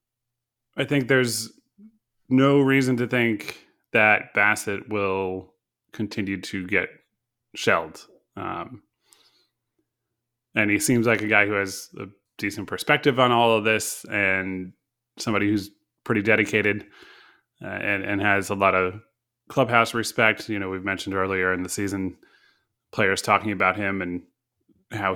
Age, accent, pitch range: 20-39, American, 100-120 Hz